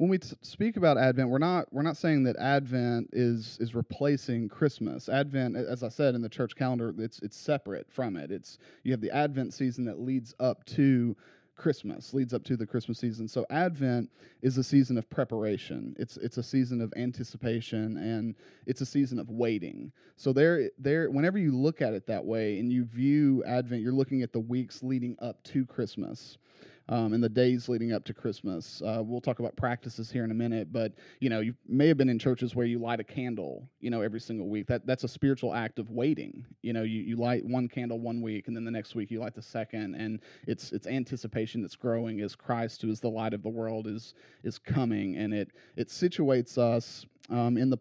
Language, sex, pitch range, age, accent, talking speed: English, male, 115-130 Hz, 30-49, American, 220 wpm